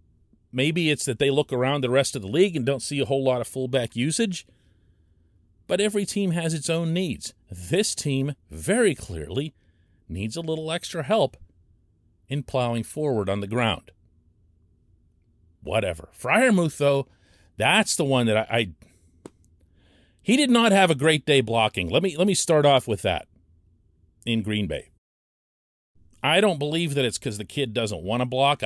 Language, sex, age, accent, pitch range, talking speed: English, male, 40-59, American, 90-130 Hz, 170 wpm